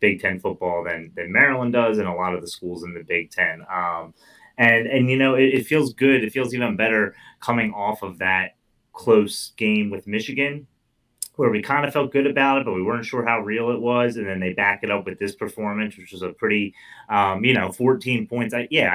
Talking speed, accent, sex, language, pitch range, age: 235 wpm, American, male, English, 95-120 Hz, 30-49